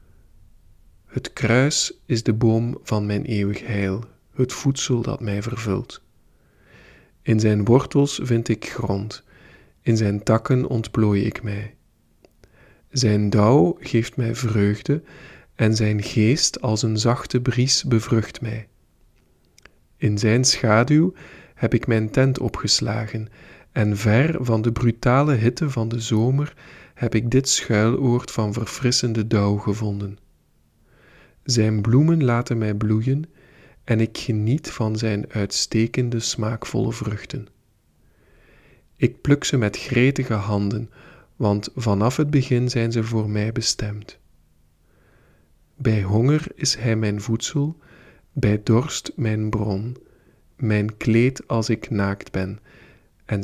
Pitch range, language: 105-125 Hz, Dutch